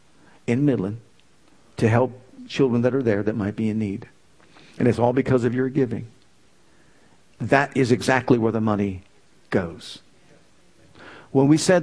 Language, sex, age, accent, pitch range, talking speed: English, male, 50-69, American, 125-160 Hz, 150 wpm